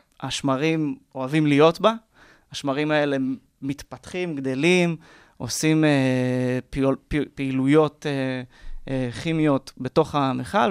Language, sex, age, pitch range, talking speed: Hebrew, male, 20-39, 130-155 Hz, 100 wpm